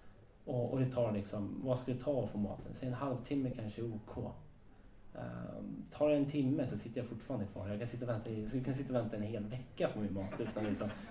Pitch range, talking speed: 110-155 Hz, 240 wpm